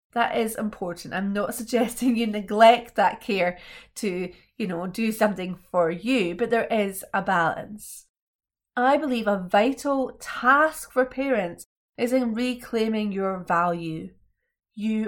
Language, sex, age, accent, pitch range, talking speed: English, female, 30-49, British, 195-255 Hz, 140 wpm